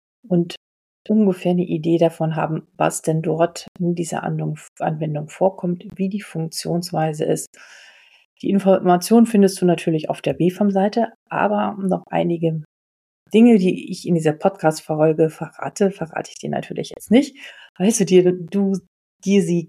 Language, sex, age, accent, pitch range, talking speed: German, female, 40-59, German, 160-195 Hz, 135 wpm